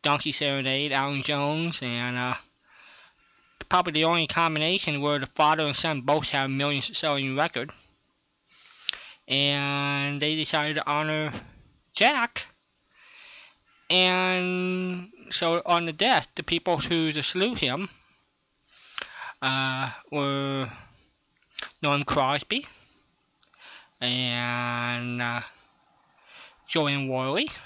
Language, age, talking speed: English, 20-39, 100 wpm